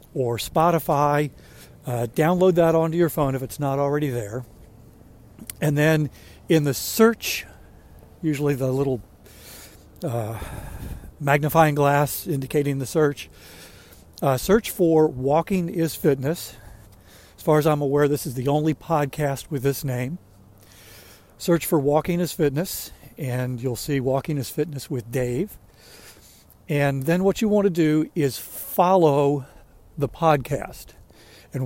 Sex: male